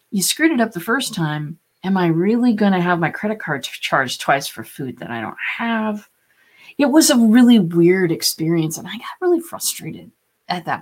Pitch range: 170-240 Hz